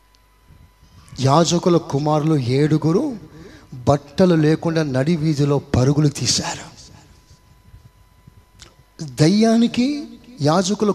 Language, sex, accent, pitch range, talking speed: Telugu, male, native, 135-185 Hz, 60 wpm